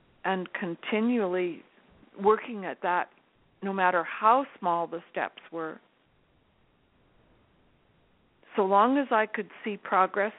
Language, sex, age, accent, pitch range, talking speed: English, female, 50-69, American, 185-220 Hz, 110 wpm